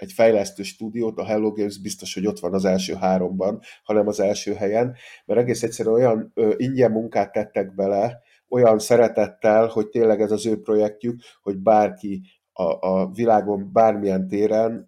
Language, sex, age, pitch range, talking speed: Hungarian, male, 50-69, 100-115 Hz, 160 wpm